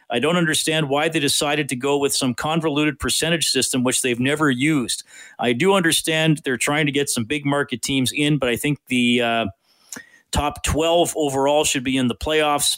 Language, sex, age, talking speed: English, male, 40-59, 195 wpm